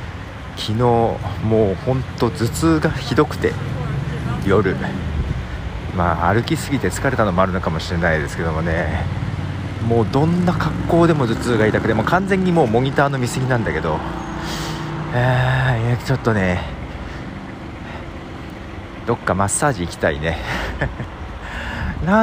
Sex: male